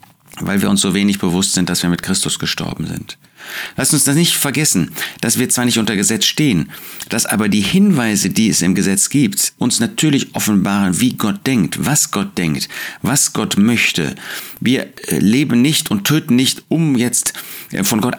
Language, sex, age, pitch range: German, male, 60-79, 95-130 Hz